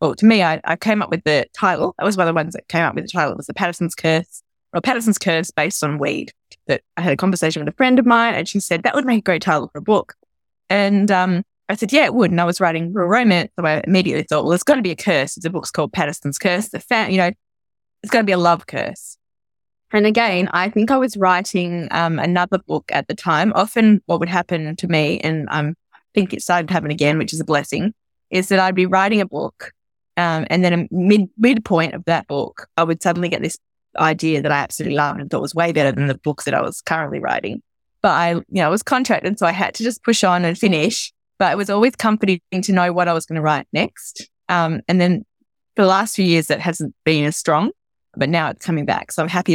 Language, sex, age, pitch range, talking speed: English, female, 20-39, 160-200 Hz, 265 wpm